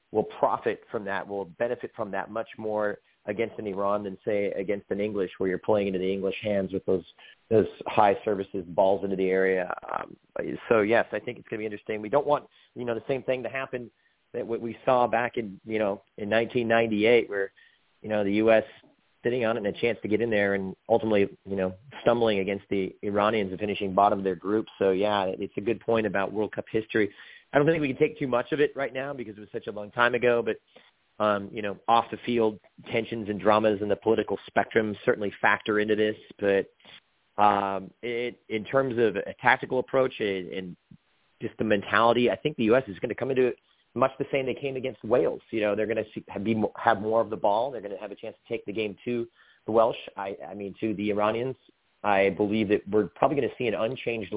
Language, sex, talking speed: English, male, 230 wpm